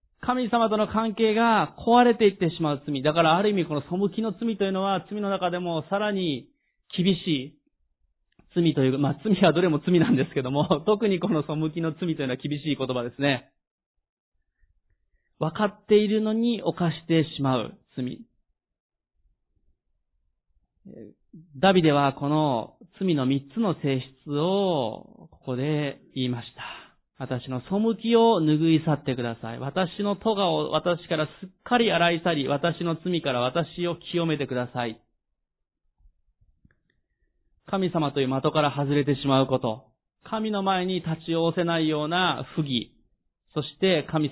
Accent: native